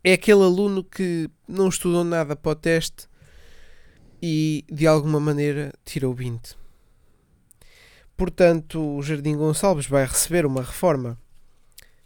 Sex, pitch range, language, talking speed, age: male, 130-155 Hz, Portuguese, 120 wpm, 20-39